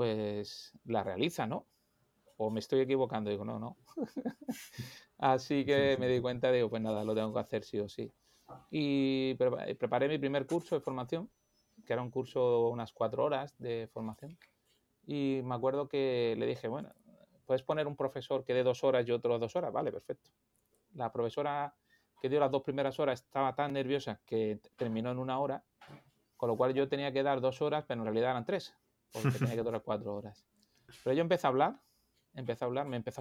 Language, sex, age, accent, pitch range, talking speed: Spanish, male, 30-49, Spanish, 115-140 Hz, 195 wpm